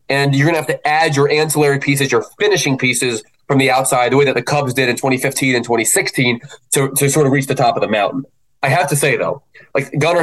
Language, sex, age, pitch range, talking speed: English, male, 20-39, 130-155 Hz, 250 wpm